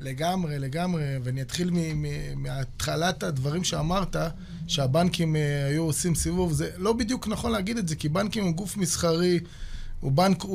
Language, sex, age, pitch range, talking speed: Hebrew, male, 20-39, 150-190 Hz, 155 wpm